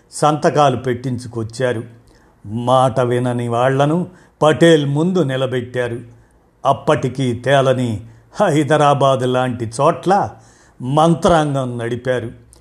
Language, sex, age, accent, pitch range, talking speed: Telugu, male, 50-69, native, 125-160 Hz, 70 wpm